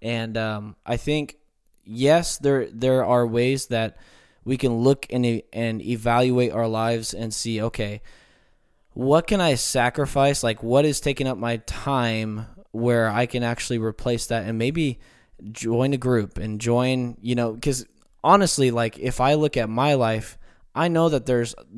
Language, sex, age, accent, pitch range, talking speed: English, male, 20-39, American, 115-130 Hz, 170 wpm